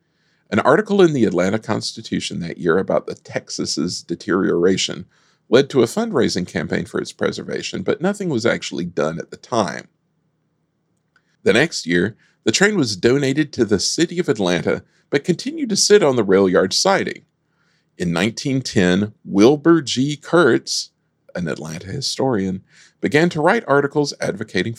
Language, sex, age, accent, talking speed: English, male, 50-69, American, 150 wpm